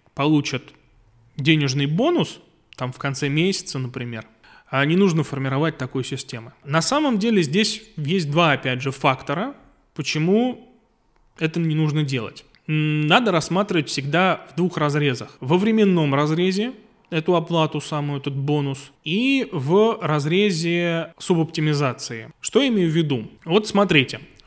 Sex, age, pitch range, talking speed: male, 20-39, 145-195 Hz, 130 wpm